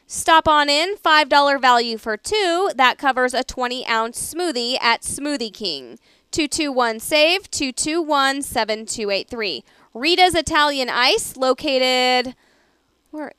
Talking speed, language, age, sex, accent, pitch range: 150 wpm, English, 20-39, female, American, 230-305 Hz